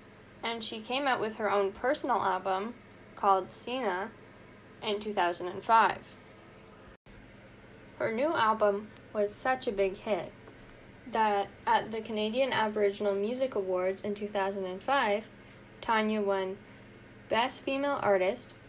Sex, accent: female, American